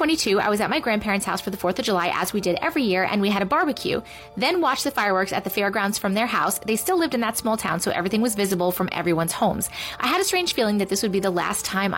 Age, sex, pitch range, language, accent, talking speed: 30-49, female, 190-260 Hz, English, American, 285 wpm